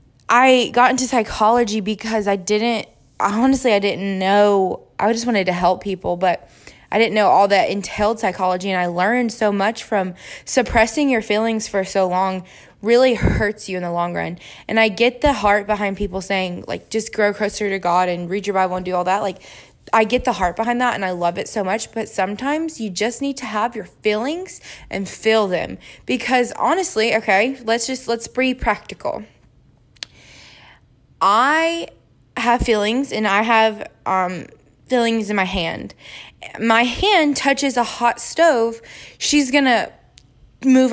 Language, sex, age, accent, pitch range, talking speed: English, female, 20-39, American, 195-255 Hz, 175 wpm